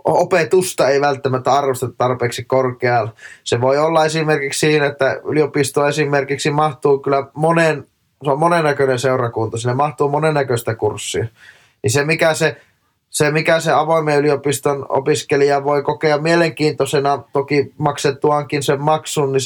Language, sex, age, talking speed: Finnish, male, 20-39, 130 wpm